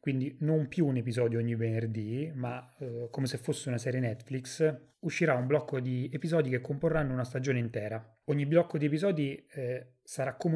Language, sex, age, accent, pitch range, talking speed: Italian, male, 30-49, native, 120-145 Hz, 180 wpm